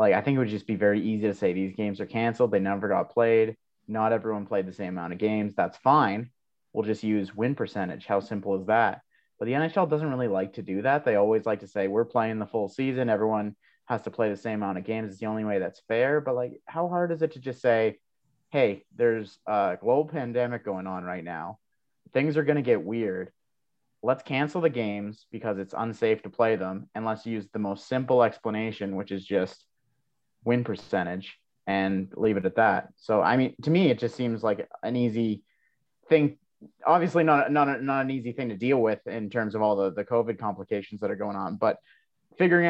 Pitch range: 105-125 Hz